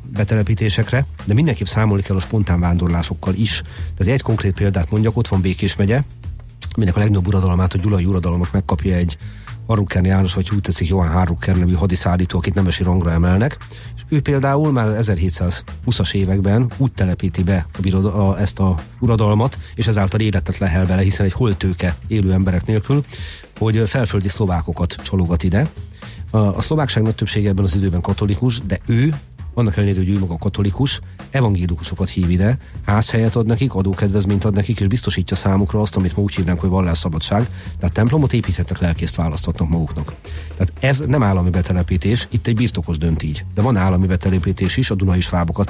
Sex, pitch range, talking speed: male, 90-110 Hz, 170 wpm